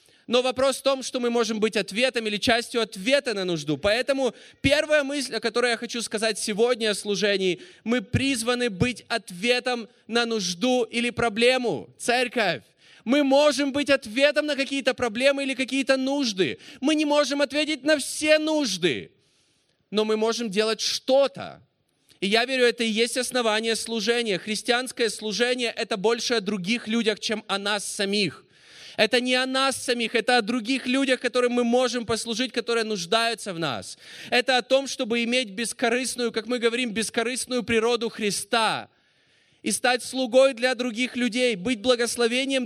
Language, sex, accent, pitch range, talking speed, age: Russian, male, native, 225-265 Hz, 160 wpm, 20-39